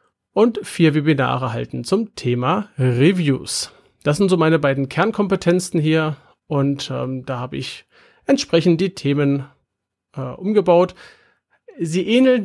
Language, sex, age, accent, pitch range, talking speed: German, male, 40-59, German, 140-185 Hz, 125 wpm